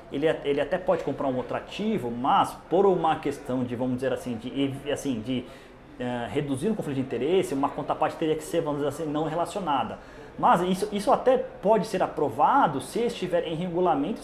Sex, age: male, 20-39